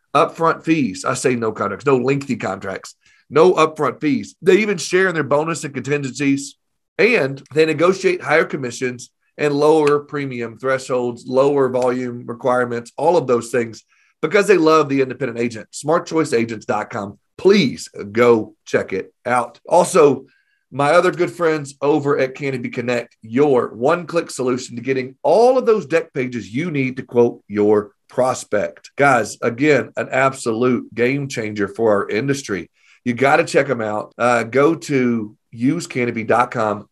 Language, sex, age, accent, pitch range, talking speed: English, male, 40-59, American, 120-150 Hz, 150 wpm